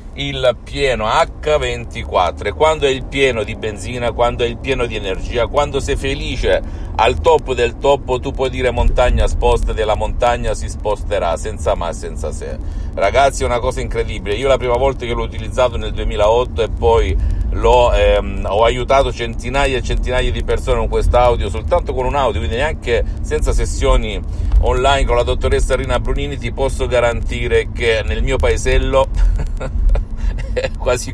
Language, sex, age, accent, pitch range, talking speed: Italian, male, 50-69, native, 90-125 Hz, 165 wpm